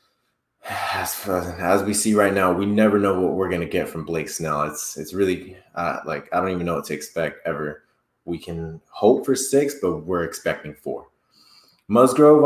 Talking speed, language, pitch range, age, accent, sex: 195 wpm, English, 100-130 Hz, 20-39, American, male